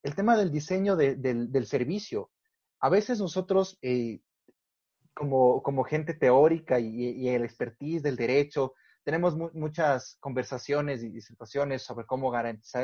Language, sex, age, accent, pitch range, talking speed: Spanish, male, 30-49, Mexican, 125-180 Hz, 135 wpm